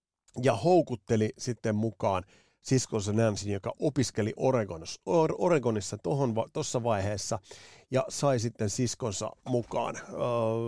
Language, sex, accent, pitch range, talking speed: Finnish, male, native, 110-135 Hz, 110 wpm